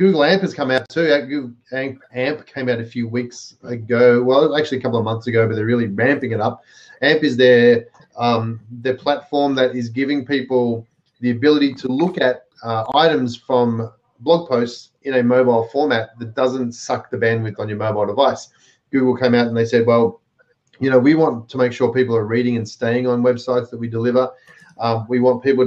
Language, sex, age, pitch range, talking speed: English, male, 30-49, 115-130 Hz, 205 wpm